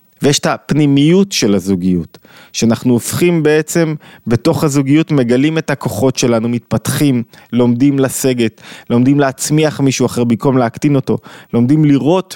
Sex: male